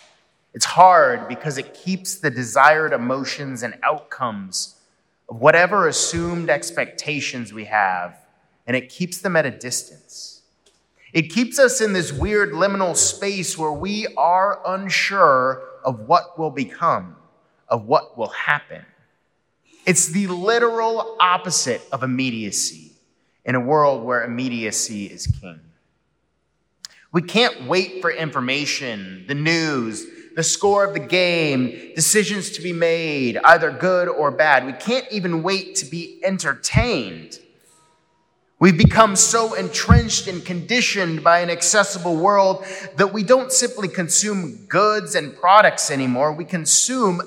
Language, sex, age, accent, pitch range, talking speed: English, male, 30-49, American, 140-195 Hz, 130 wpm